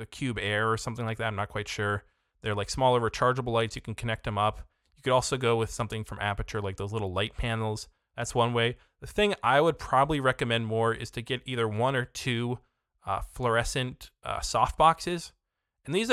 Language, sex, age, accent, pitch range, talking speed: English, male, 20-39, American, 100-125 Hz, 210 wpm